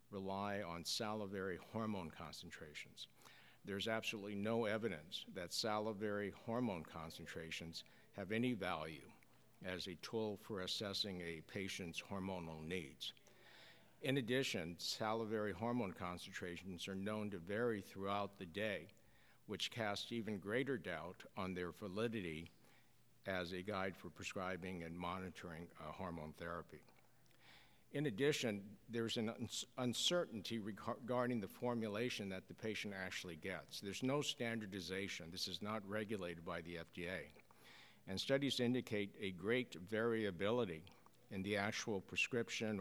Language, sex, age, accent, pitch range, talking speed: English, male, 60-79, American, 90-115 Hz, 125 wpm